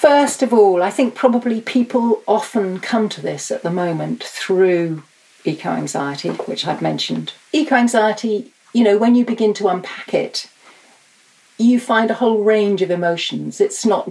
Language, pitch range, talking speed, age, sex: English, 175-230 Hz, 155 wpm, 40-59, female